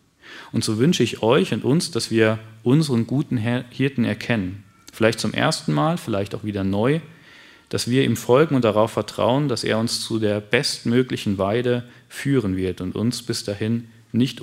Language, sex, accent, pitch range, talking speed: German, male, German, 100-120 Hz, 175 wpm